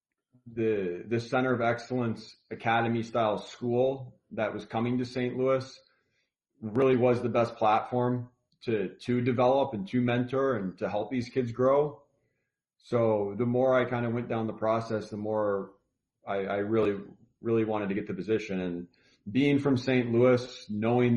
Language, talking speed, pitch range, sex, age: English, 165 wpm, 110-125 Hz, male, 40-59